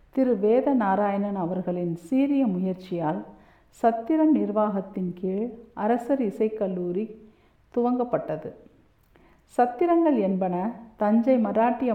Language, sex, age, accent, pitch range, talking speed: Tamil, female, 50-69, native, 195-250 Hz, 75 wpm